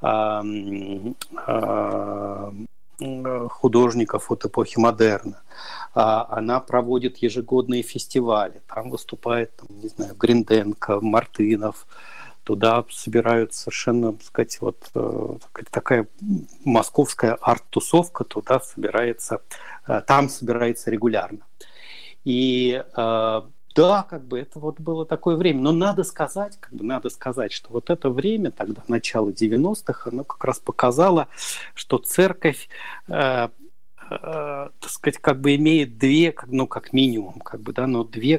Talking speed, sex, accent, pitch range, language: 115 wpm, male, native, 115-160 Hz, Russian